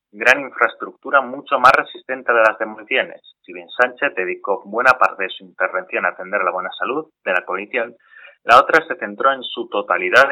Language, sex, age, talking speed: Spanish, male, 30-49, 185 wpm